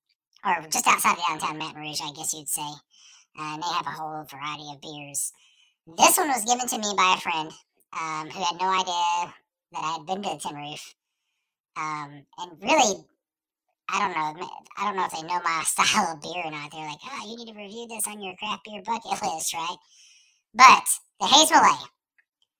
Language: English